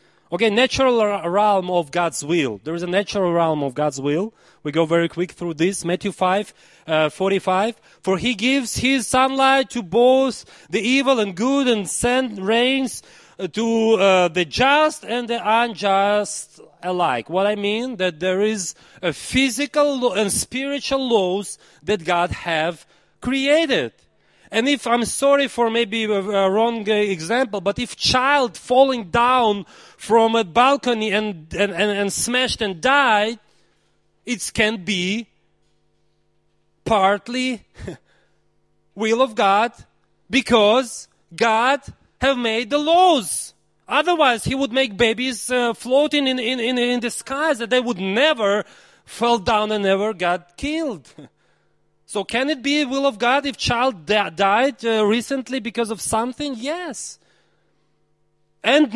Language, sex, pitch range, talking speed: Czech, male, 195-260 Hz, 145 wpm